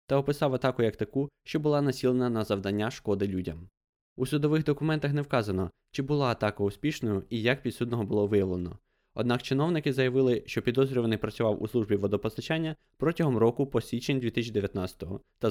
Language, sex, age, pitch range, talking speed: Ukrainian, male, 20-39, 100-130 Hz, 160 wpm